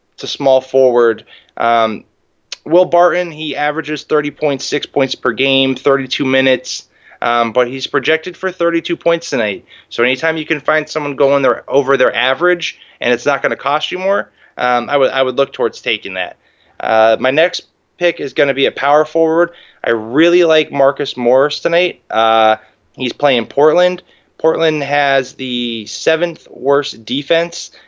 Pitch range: 125-155 Hz